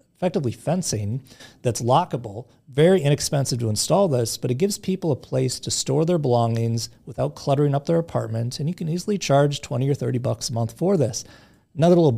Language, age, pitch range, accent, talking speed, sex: English, 30-49, 120-155 Hz, American, 190 wpm, male